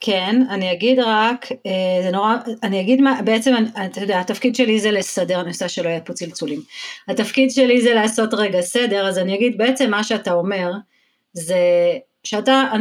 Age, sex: 30-49, female